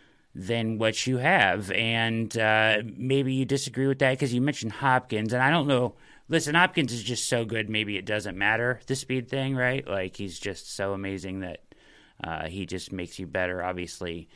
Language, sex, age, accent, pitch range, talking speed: English, male, 30-49, American, 100-135 Hz, 190 wpm